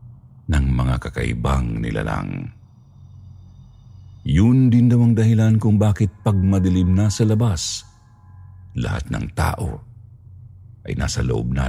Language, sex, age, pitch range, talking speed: Filipino, male, 50-69, 85-110 Hz, 120 wpm